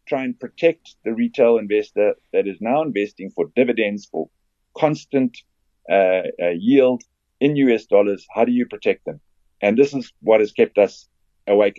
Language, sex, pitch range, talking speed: English, male, 105-145 Hz, 170 wpm